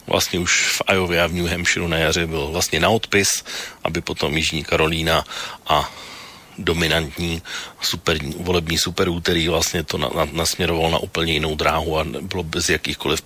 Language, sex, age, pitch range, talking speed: Slovak, male, 40-59, 80-95 Hz, 170 wpm